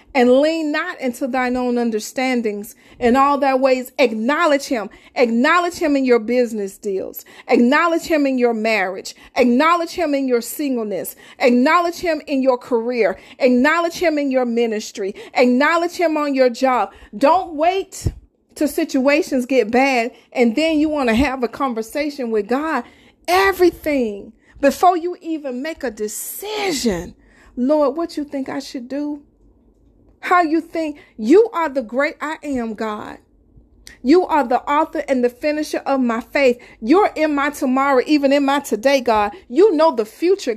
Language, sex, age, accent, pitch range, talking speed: English, female, 40-59, American, 245-310 Hz, 160 wpm